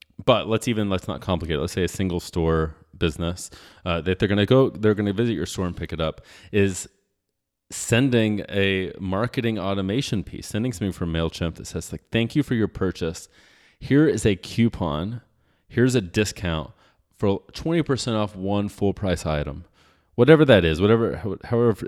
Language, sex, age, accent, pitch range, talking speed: English, male, 30-49, American, 85-110 Hz, 175 wpm